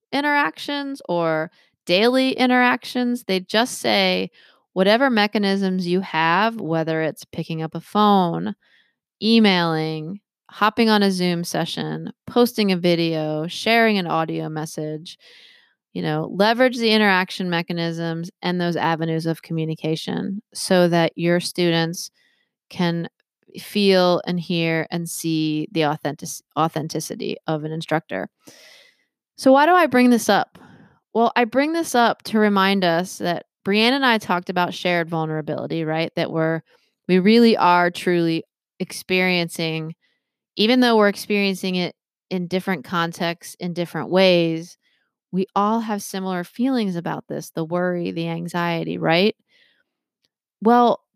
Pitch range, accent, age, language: 165-210 Hz, American, 30-49, English